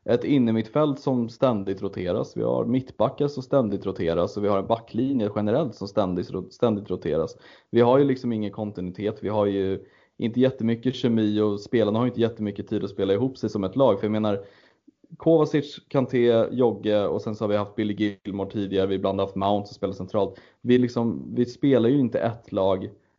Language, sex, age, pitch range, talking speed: Swedish, male, 20-39, 105-125 Hz, 200 wpm